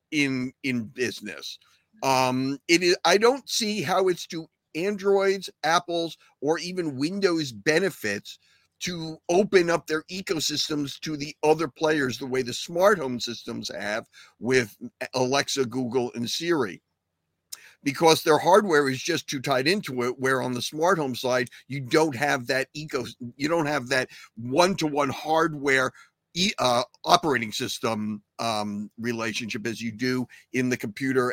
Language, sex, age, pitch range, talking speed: English, male, 50-69, 125-175 Hz, 150 wpm